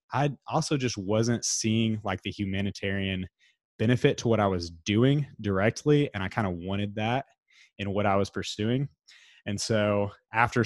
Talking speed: 165 wpm